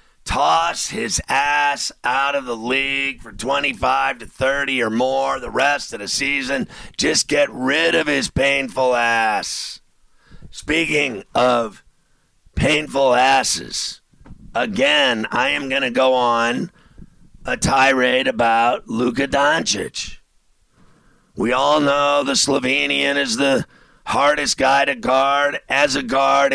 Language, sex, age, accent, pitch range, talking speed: English, male, 50-69, American, 130-145 Hz, 125 wpm